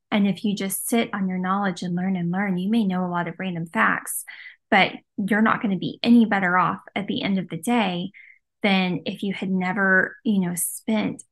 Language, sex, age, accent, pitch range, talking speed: English, female, 10-29, American, 195-240 Hz, 230 wpm